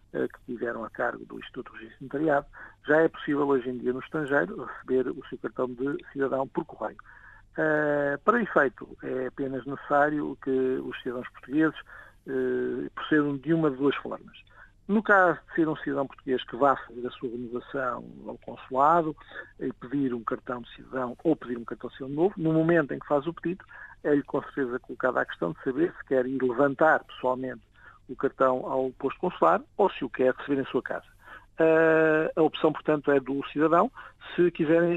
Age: 50-69